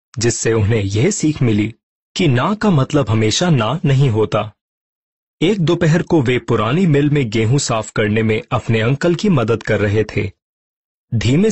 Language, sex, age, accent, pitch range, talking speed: Hindi, male, 30-49, native, 110-155 Hz, 165 wpm